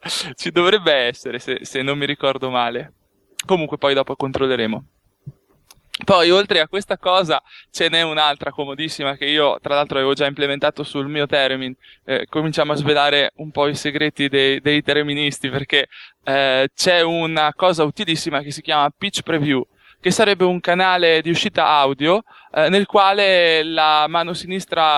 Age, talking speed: 20-39, 160 wpm